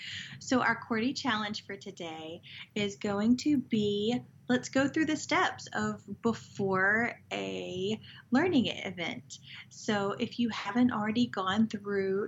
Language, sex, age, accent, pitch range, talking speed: English, female, 30-49, American, 190-235 Hz, 130 wpm